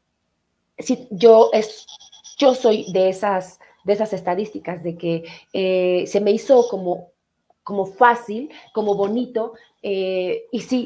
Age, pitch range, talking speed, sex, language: 30-49, 185-240 Hz, 115 wpm, female, Spanish